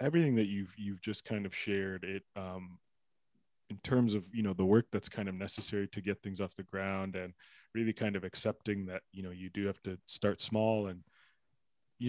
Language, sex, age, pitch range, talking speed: English, male, 20-39, 95-115 Hz, 215 wpm